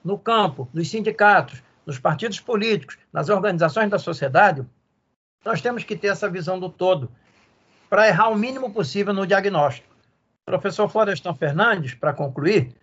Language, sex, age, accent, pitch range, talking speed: Portuguese, male, 60-79, Brazilian, 160-210 Hz, 150 wpm